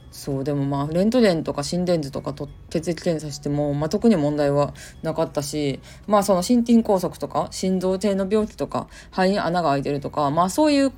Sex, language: female, Japanese